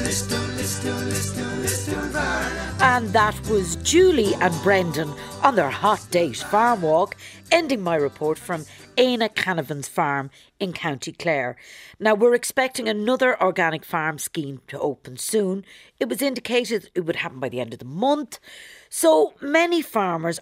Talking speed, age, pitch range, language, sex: 140 wpm, 50-69, 155-240 Hz, English, female